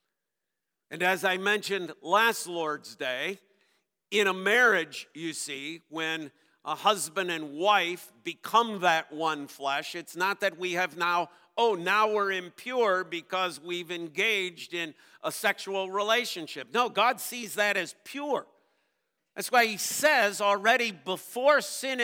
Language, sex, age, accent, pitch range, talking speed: English, male, 50-69, American, 185-255 Hz, 140 wpm